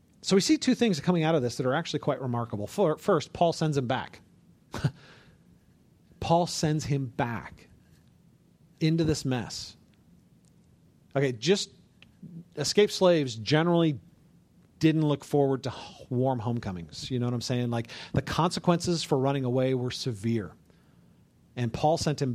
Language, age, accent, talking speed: English, 40-59, American, 145 wpm